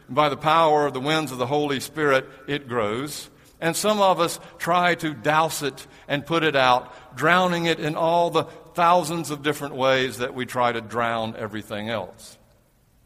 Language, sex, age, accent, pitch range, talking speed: English, male, 60-79, American, 125-160 Hz, 185 wpm